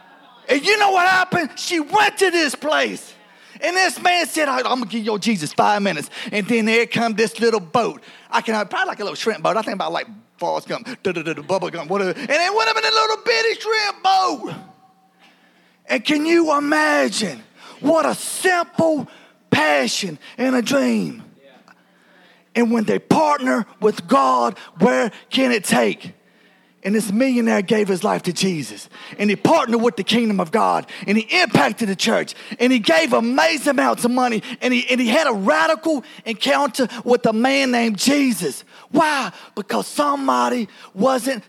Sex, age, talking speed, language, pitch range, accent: male, 30-49, 180 wpm, English, 220-300 Hz, American